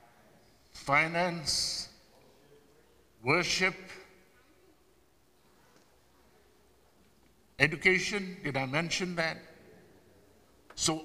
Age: 60-79